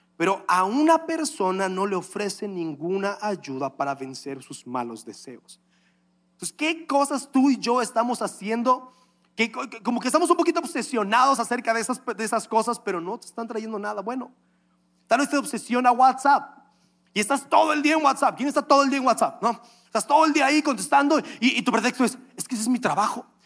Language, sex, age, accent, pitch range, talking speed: Spanish, male, 30-49, Mexican, 190-265 Hz, 200 wpm